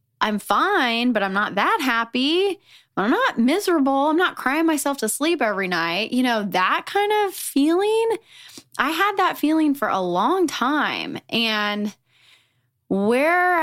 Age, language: 20-39, English